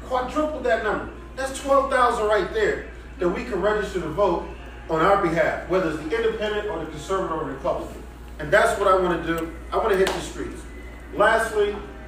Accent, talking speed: American, 200 wpm